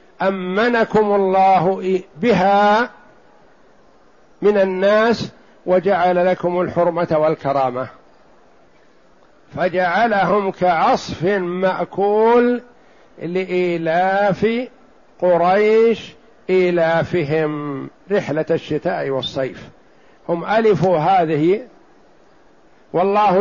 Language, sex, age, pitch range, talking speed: Arabic, male, 60-79, 180-210 Hz, 55 wpm